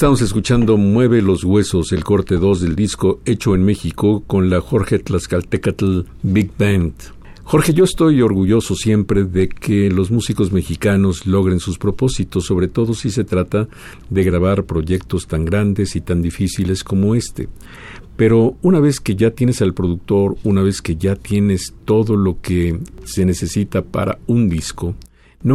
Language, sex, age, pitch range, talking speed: Spanish, male, 50-69, 90-105 Hz, 160 wpm